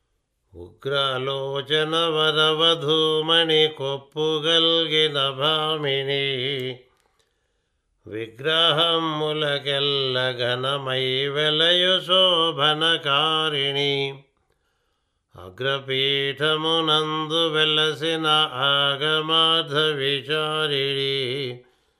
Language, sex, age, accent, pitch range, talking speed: Telugu, male, 50-69, native, 140-160 Hz, 35 wpm